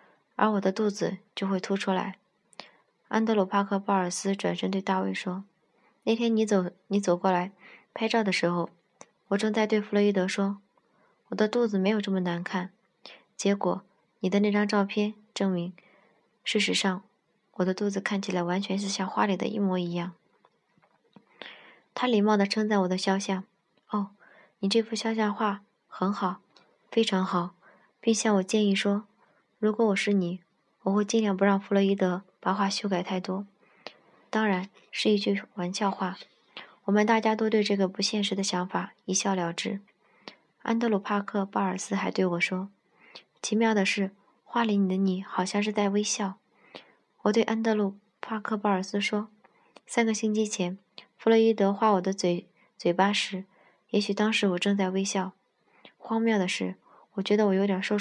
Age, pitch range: 20-39, 190-215 Hz